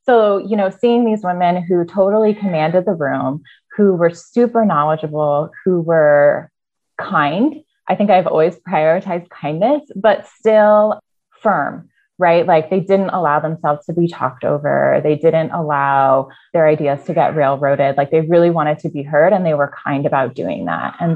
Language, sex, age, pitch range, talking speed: English, female, 20-39, 150-185 Hz, 170 wpm